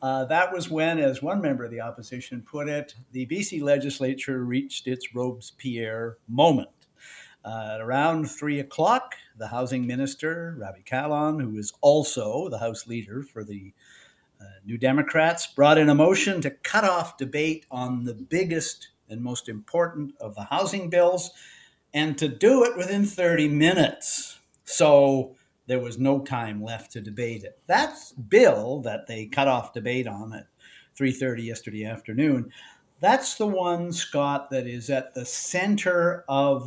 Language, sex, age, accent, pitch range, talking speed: English, male, 50-69, American, 120-155 Hz, 155 wpm